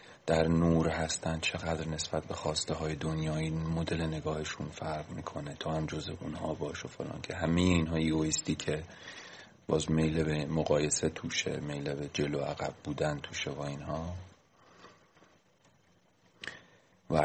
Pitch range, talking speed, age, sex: 80-95 Hz, 140 wpm, 40-59, male